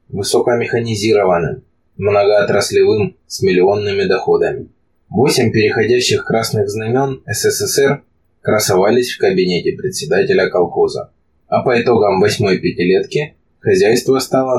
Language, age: Russian, 20-39